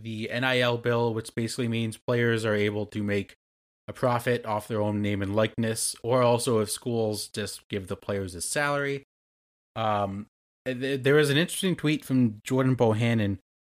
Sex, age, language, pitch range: male, 30-49, English, 105-130 Hz